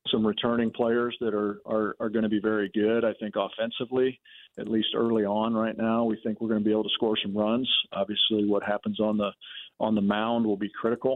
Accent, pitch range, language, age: American, 105-115 Hz, English, 40-59